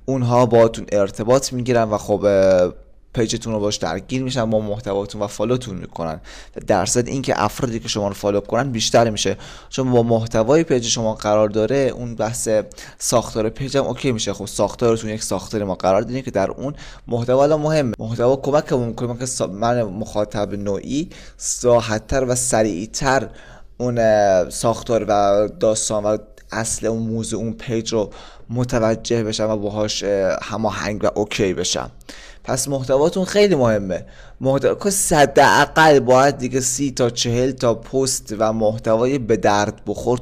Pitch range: 105-130 Hz